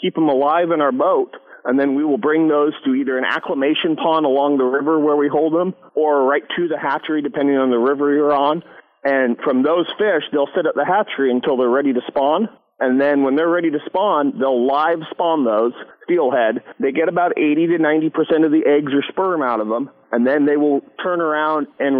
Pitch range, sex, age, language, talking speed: 135-165 Hz, male, 40-59, English, 220 wpm